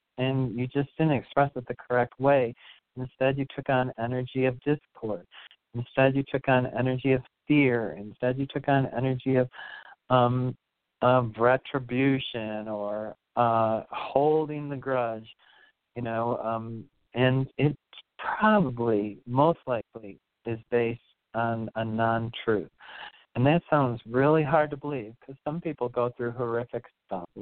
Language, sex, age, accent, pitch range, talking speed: English, male, 40-59, American, 120-140 Hz, 140 wpm